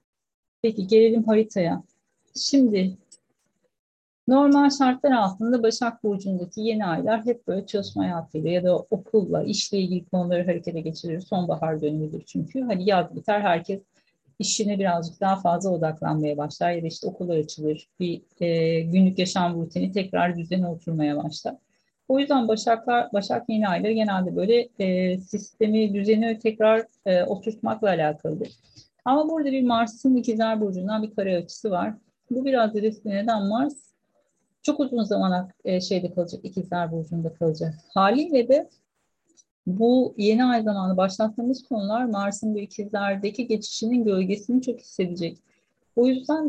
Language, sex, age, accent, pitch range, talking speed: Turkish, female, 50-69, native, 180-225 Hz, 130 wpm